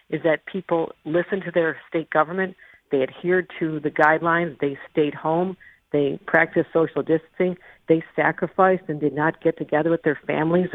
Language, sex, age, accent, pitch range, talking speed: English, female, 50-69, American, 150-185 Hz, 165 wpm